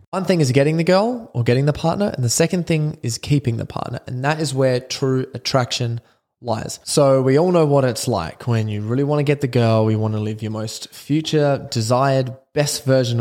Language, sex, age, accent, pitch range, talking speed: English, male, 20-39, Australian, 115-150 Hz, 225 wpm